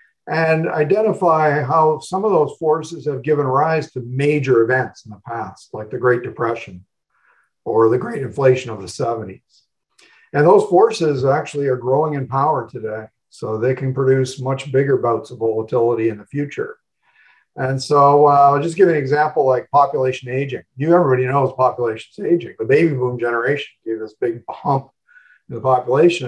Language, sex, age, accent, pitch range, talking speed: English, male, 50-69, American, 125-160 Hz, 170 wpm